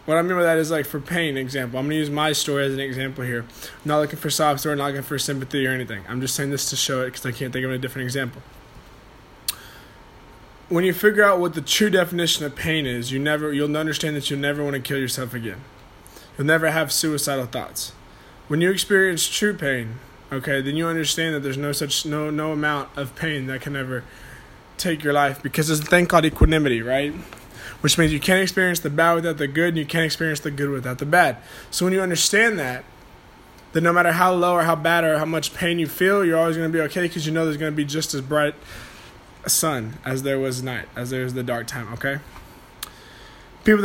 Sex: male